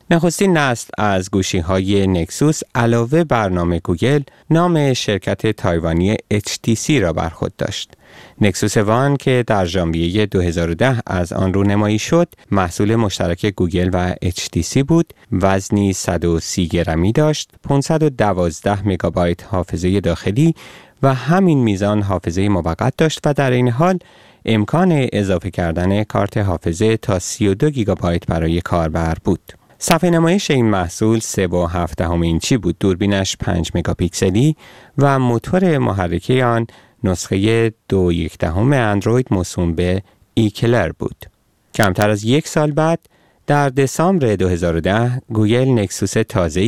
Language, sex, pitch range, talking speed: Persian, male, 90-130 Hz, 125 wpm